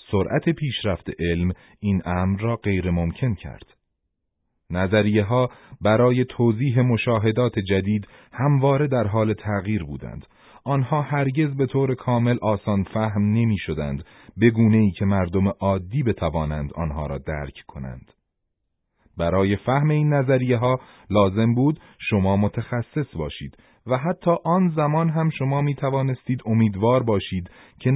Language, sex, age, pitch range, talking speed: Persian, male, 30-49, 95-130 Hz, 130 wpm